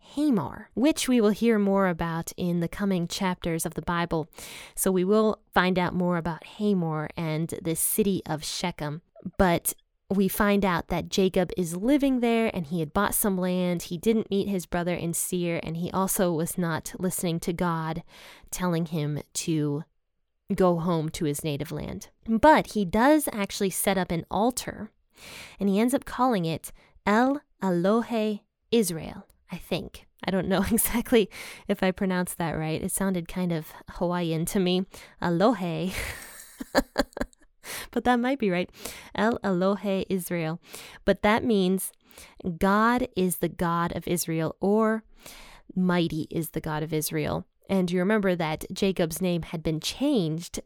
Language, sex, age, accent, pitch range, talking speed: English, female, 10-29, American, 165-205 Hz, 160 wpm